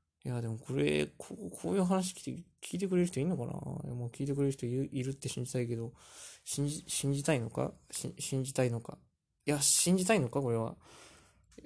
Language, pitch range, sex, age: Japanese, 125-155 Hz, male, 20-39